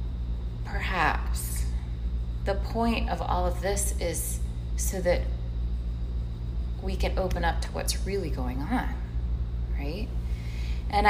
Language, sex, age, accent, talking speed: English, female, 20-39, American, 115 wpm